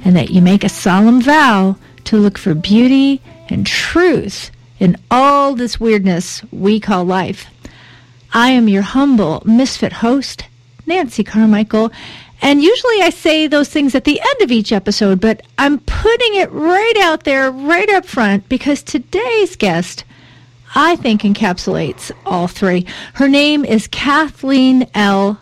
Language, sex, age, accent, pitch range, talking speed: English, female, 40-59, American, 195-275 Hz, 150 wpm